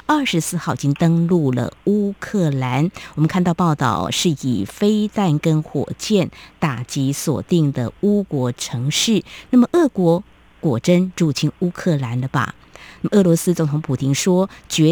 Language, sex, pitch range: Chinese, female, 145-200 Hz